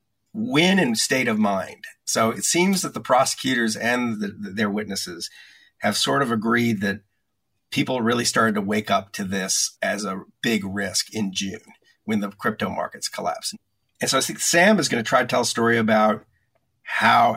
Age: 50-69